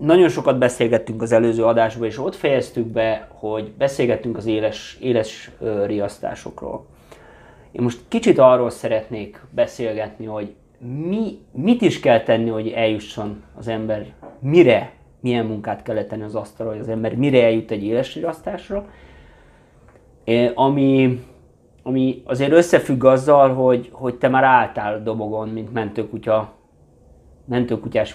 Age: 30-49